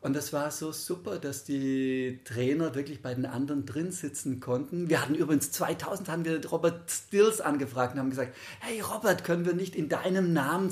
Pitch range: 130-165 Hz